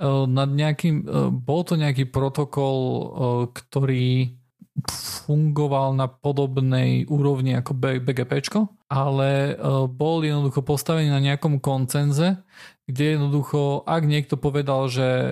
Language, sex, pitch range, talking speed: Slovak, male, 130-150 Hz, 100 wpm